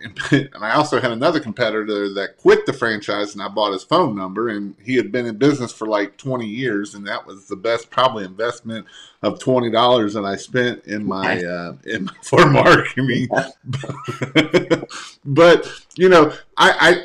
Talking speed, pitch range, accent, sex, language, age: 180 wpm, 115-140 Hz, American, male, English, 30-49